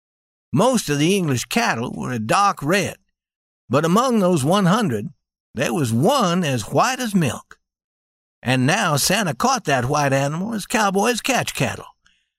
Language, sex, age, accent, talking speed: English, male, 60-79, American, 150 wpm